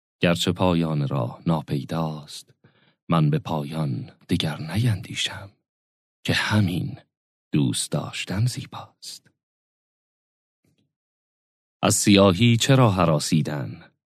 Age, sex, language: 40-59, male, Persian